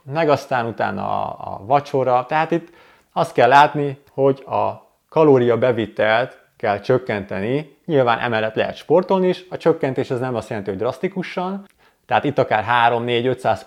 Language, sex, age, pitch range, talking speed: Hungarian, male, 30-49, 110-145 Hz, 145 wpm